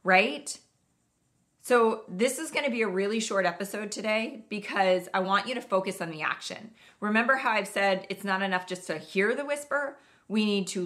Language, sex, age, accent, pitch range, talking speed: English, female, 30-49, American, 190-235 Hz, 200 wpm